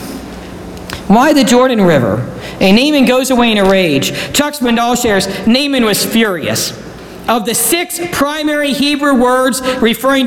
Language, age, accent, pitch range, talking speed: English, 50-69, American, 190-255 Hz, 140 wpm